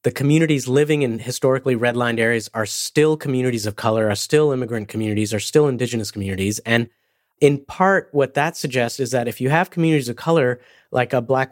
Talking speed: 195 wpm